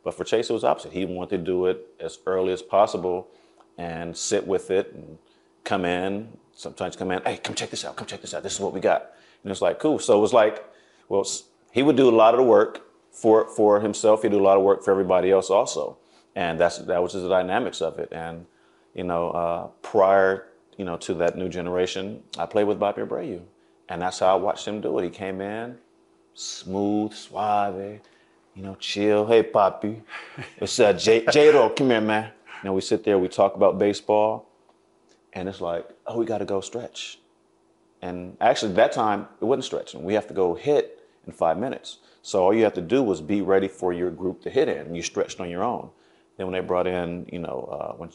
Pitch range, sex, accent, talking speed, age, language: 90-105 Hz, male, American, 225 wpm, 30-49, English